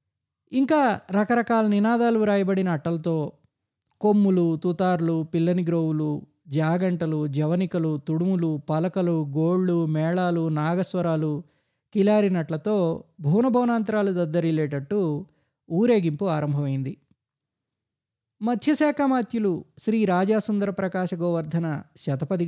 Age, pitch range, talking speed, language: 20-39, 155-205 Hz, 75 wpm, Telugu